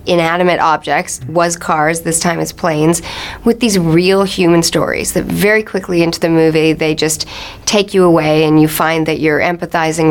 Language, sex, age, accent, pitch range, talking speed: English, female, 40-59, American, 160-195 Hz, 180 wpm